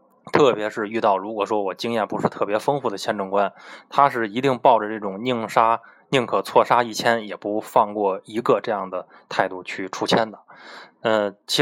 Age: 20-39